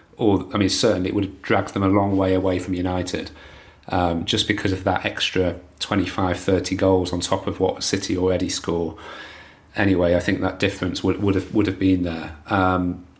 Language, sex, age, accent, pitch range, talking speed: English, male, 30-49, British, 95-110 Hz, 200 wpm